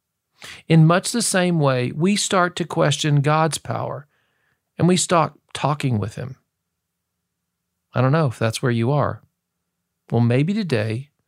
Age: 50-69